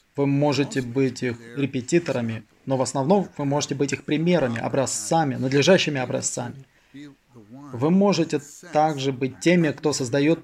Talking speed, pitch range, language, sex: 130 wpm, 125-150 Hz, Russian, male